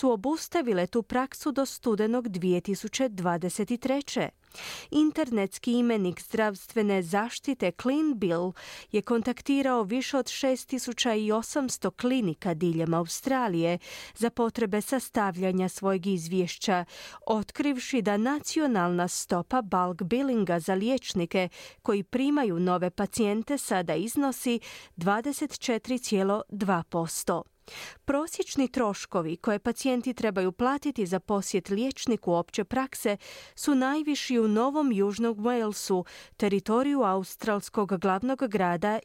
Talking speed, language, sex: 95 wpm, Croatian, female